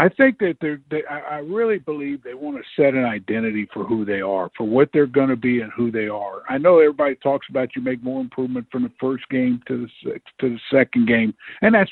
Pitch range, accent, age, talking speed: 130-155 Hz, American, 50-69, 245 wpm